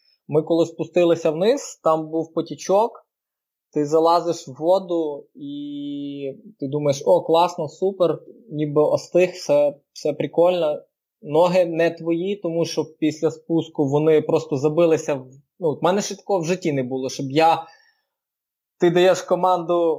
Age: 20-39